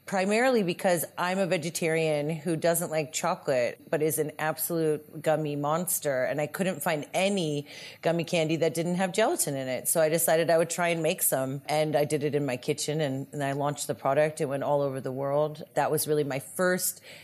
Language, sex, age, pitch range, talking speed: English, female, 30-49, 150-175 Hz, 210 wpm